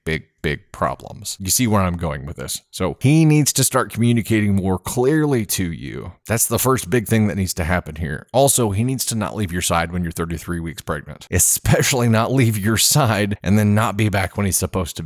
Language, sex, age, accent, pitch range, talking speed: English, male, 30-49, American, 95-115 Hz, 225 wpm